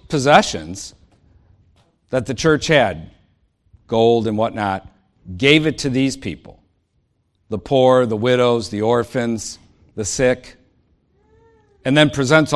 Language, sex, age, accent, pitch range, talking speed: English, male, 50-69, American, 100-130 Hz, 115 wpm